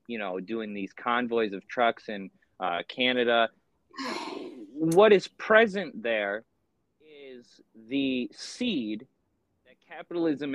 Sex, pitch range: male, 115-150 Hz